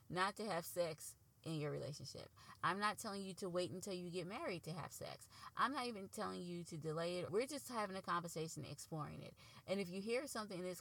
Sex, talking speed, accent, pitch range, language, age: female, 235 wpm, American, 155-195 Hz, English, 20-39